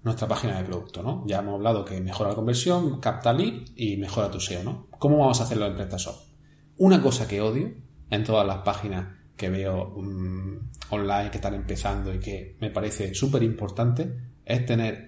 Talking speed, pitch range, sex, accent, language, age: 185 wpm, 100-125 Hz, male, Spanish, Spanish, 30-49